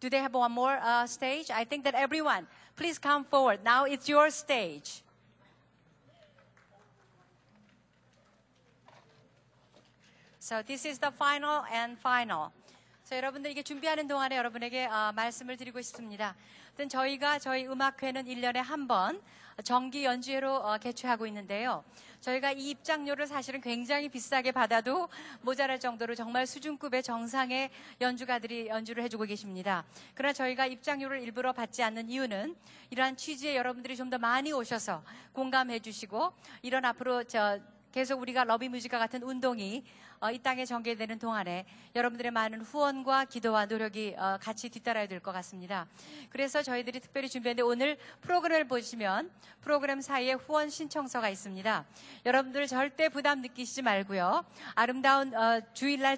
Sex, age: female, 40-59